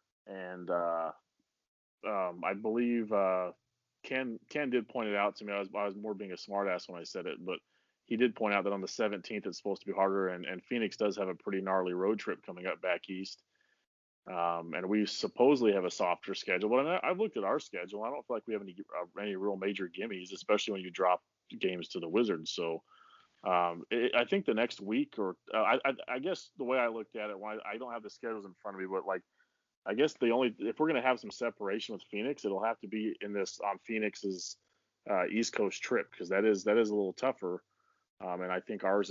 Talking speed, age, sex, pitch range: 245 wpm, 30-49, male, 95-110 Hz